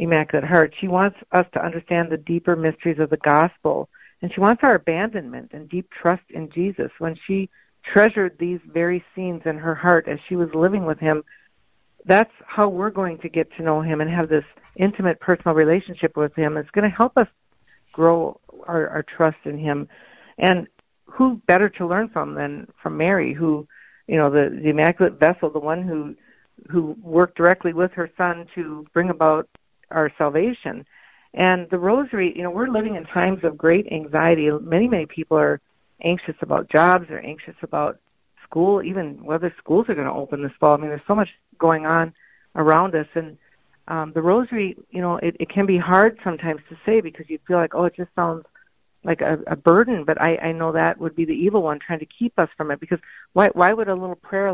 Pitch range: 155-185 Hz